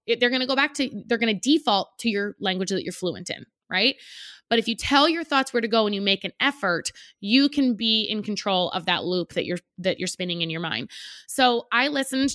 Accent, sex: American, female